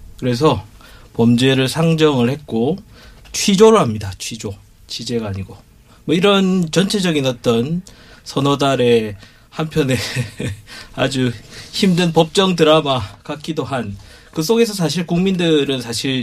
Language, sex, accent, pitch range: Korean, male, native, 110-145 Hz